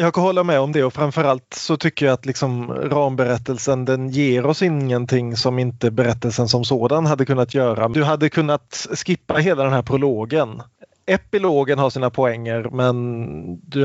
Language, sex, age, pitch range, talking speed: Swedish, male, 30-49, 120-155 Hz, 170 wpm